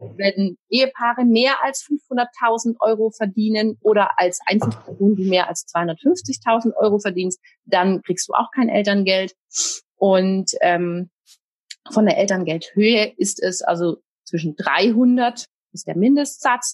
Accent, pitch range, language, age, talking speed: German, 185-230 Hz, German, 30-49, 125 wpm